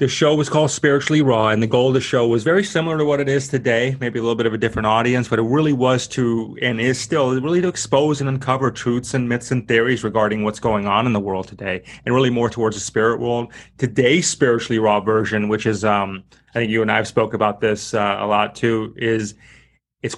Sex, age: male, 30-49